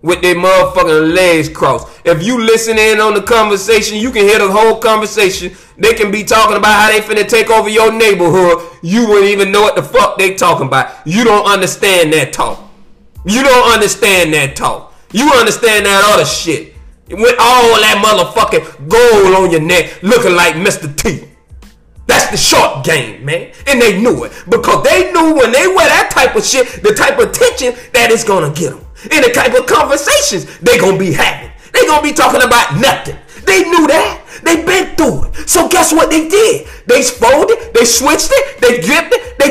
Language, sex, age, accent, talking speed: English, male, 30-49, American, 195 wpm